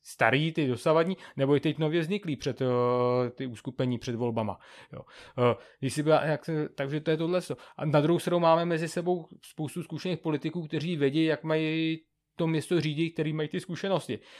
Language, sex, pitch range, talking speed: Czech, male, 130-155 Hz, 185 wpm